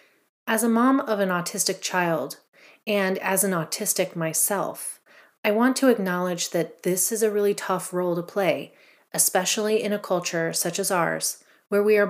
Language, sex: English, female